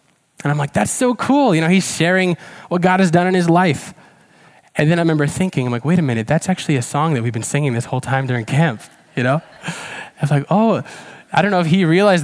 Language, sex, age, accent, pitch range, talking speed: English, male, 10-29, American, 125-170 Hz, 255 wpm